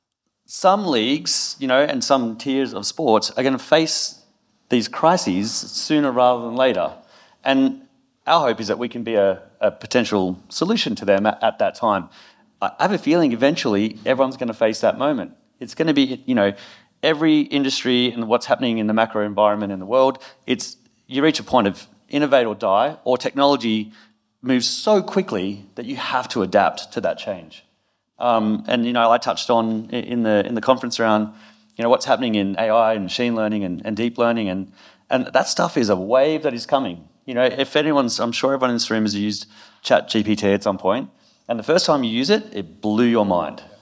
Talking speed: 210 wpm